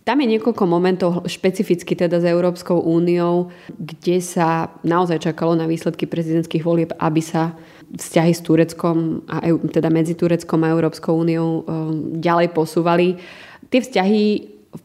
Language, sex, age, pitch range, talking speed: Slovak, female, 20-39, 165-180 Hz, 140 wpm